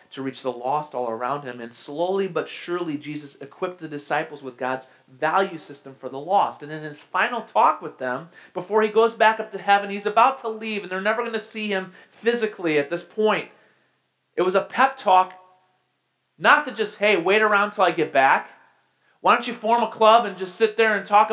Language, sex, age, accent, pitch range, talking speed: English, male, 40-59, American, 130-215 Hz, 220 wpm